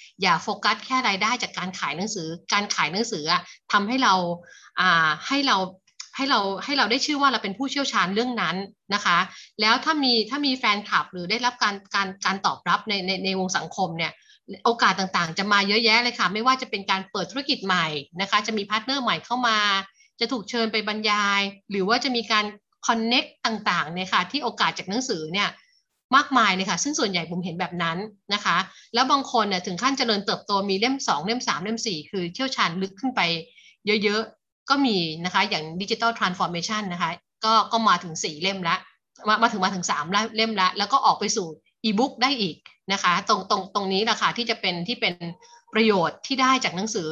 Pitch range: 190-235 Hz